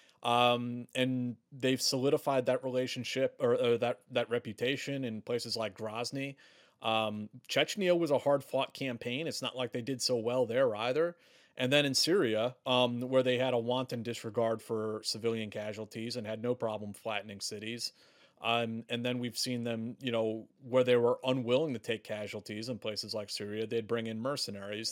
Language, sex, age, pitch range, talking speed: Greek, male, 30-49, 115-130 Hz, 180 wpm